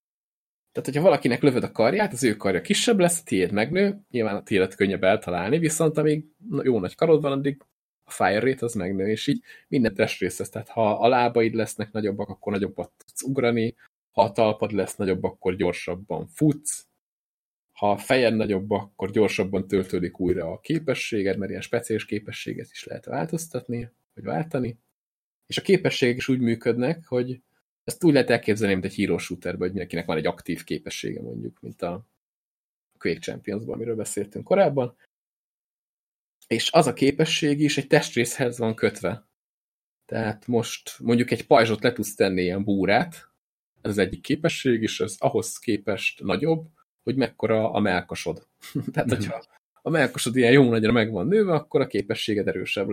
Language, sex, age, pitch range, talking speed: Hungarian, male, 20-39, 110-145 Hz, 165 wpm